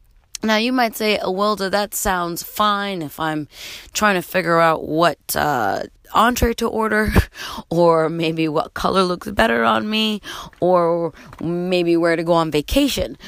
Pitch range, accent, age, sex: 155-205 Hz, American, 30-49, female